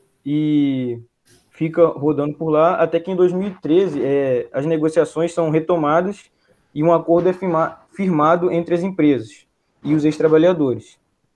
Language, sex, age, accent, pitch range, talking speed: Portuguese, male, 20-39, Brazilian, 150-180 Hz, 125 wpm